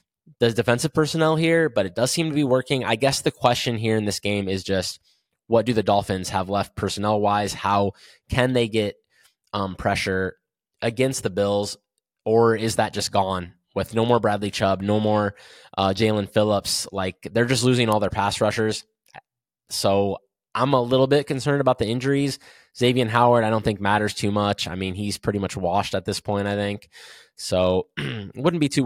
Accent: American